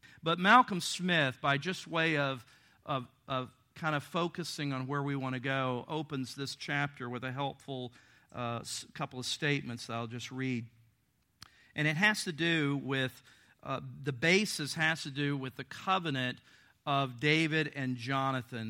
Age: 50-69